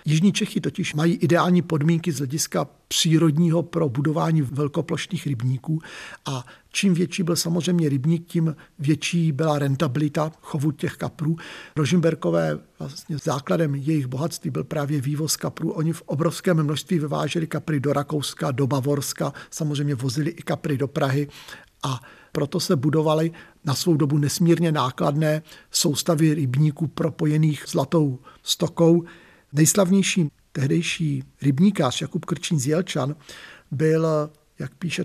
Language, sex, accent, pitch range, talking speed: Czech, male, native, 145-170 Hz, 125 wpm